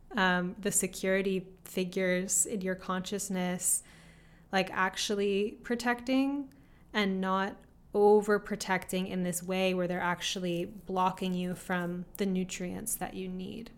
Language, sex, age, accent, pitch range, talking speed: English, female, 20-39, American, 180-200 Hz, 120 wpm